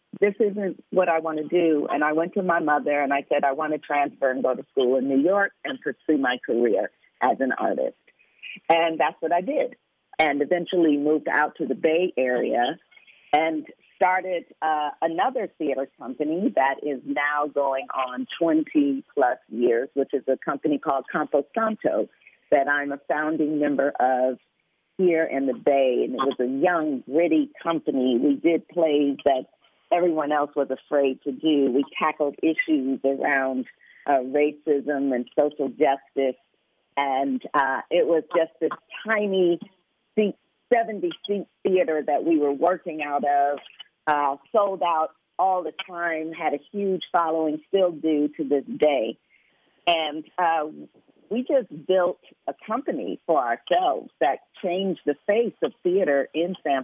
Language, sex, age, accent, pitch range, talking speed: English, female, 50-69, American, 140-180 Hz, 160 wpm